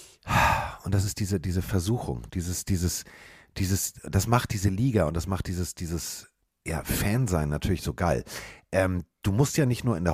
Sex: male